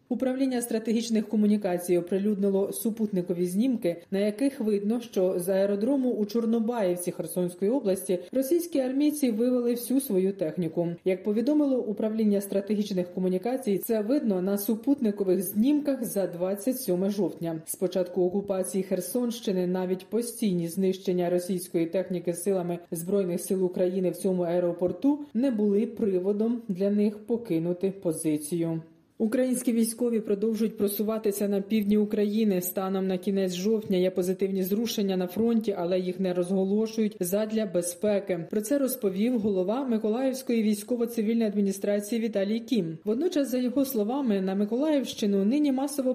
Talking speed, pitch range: 125 wpm, 185-235 Hz